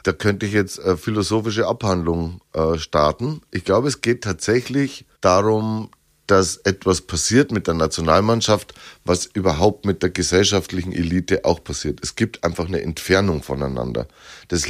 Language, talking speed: German, 145 wpm